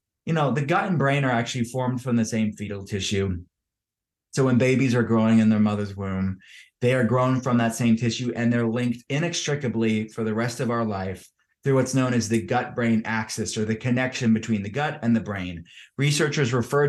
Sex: male